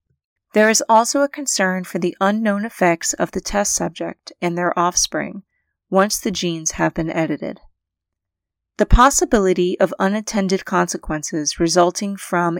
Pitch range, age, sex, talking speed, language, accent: 165-205 Hz, 30-49, female, 140 wpm, English, American